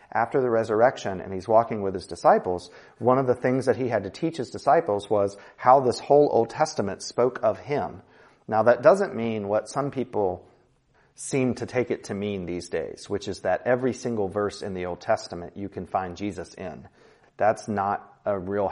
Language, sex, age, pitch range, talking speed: English, male, 40-59, 95-125 Hz, 200 wpm